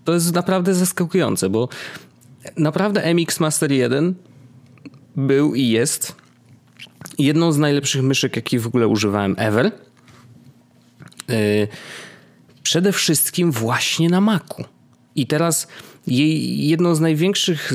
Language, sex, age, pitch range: Polish, male, 30-49, 115-165 Hz